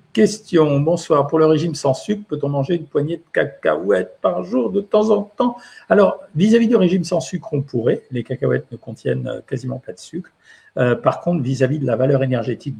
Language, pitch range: French, 130-160 Hz